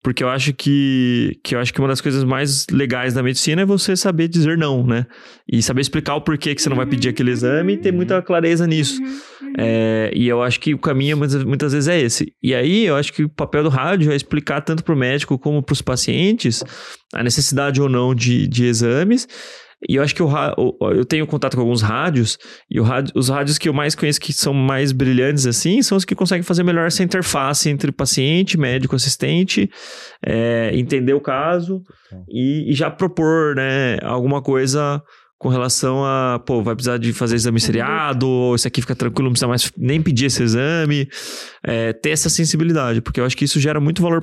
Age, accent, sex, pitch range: 20-39, Brazilian, male, 125-155 Hz